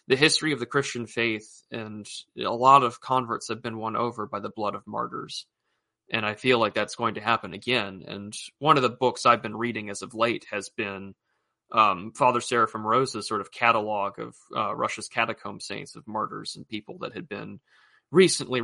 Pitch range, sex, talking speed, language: 110-140 Hz, male, 200 wpm, English